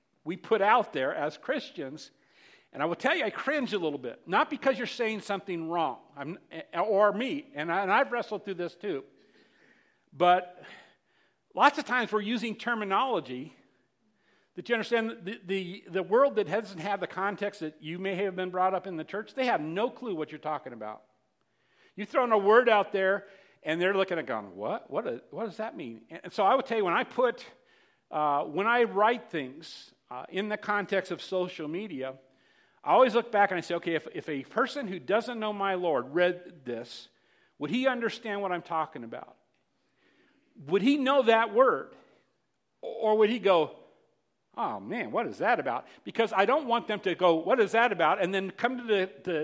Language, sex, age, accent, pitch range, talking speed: English, male, 50-69, American, 170-230 Hz, 205 wpm